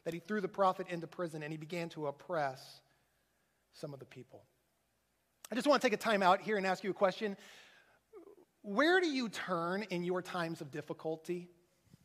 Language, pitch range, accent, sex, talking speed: English, 160-210 Hz, American, male, 195 wpm